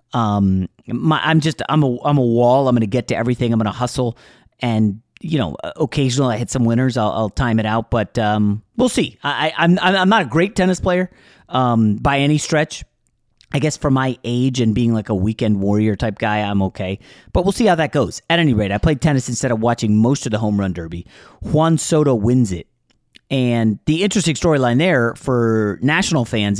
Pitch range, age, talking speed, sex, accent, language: 110-150 Hz, 30-49, 220 wpm, male, American, English